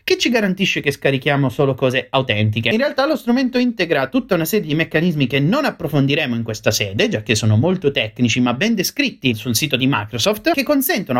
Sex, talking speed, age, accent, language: male, 205 wpm, 30-49, native, Italian